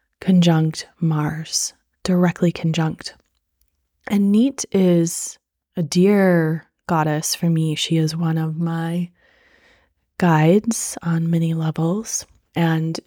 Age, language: 20-39, English